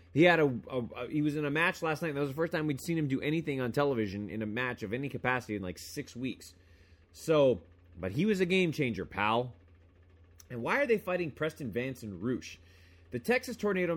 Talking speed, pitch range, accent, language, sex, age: 235 wpm, 95-160 Hz, American, English, male, 30-49